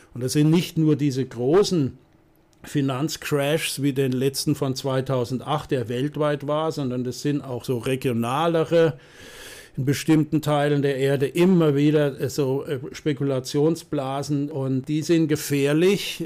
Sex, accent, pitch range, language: male, German, 135-155 Hz, German